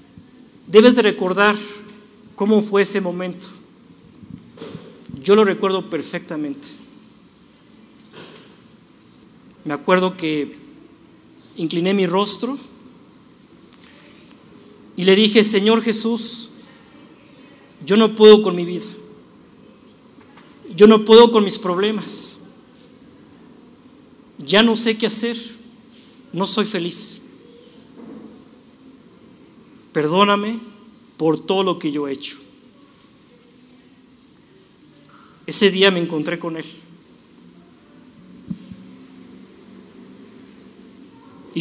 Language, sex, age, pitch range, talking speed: Spanish, male, 50-69, 185-235 Hz, 80 wpm